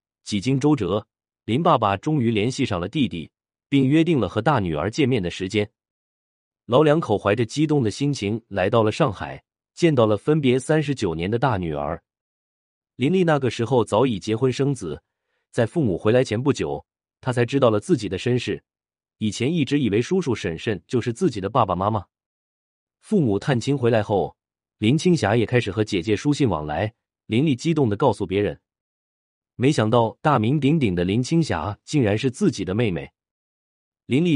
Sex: male